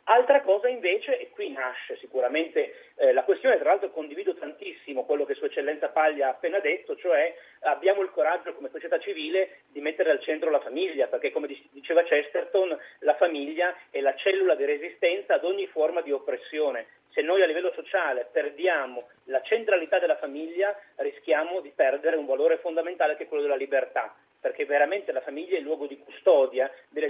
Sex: male